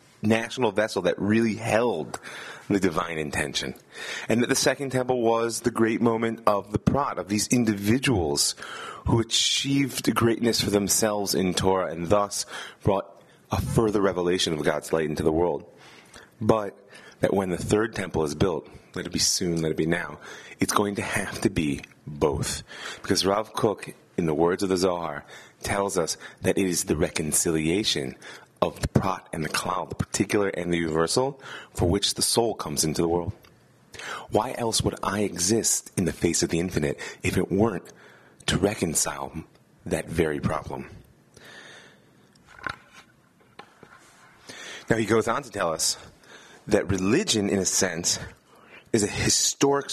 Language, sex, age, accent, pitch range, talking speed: English, male, 30-49, American, 90-115 Hz, 160 wpm